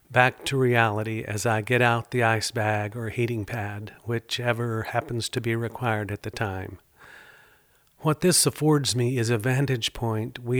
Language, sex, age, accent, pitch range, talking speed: English, male, 50-69, American, 120-140 Hz, 170 wpm